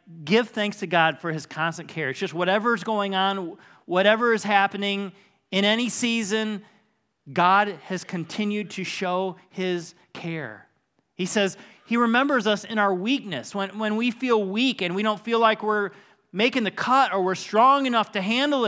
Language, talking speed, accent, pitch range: English, 175 wpm, American, 195-255 Hz